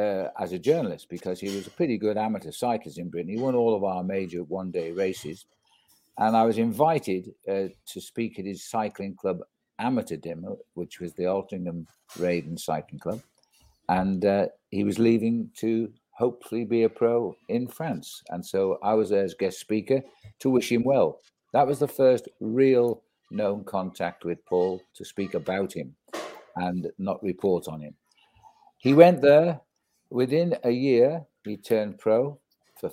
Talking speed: 170 wpm